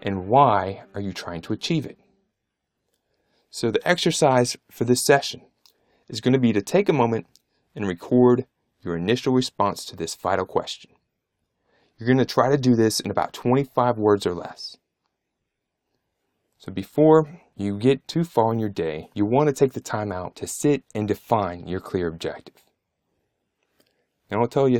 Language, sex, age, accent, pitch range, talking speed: English, male, 30-49, American, 100-130 Hz, 170 wpm